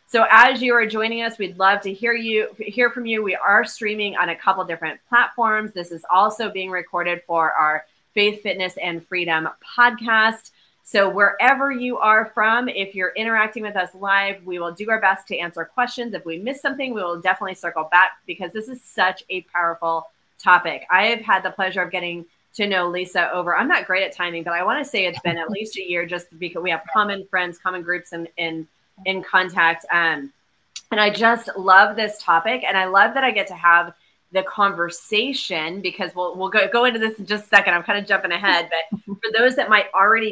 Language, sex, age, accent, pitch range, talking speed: English, female, 30-49, American, 170-215 Hz, 220 wpm